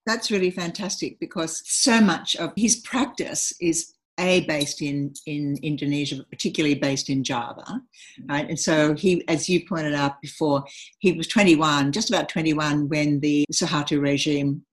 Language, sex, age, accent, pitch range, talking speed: English, female, 60-79, Australian, 140-165 Hz, 160 wpm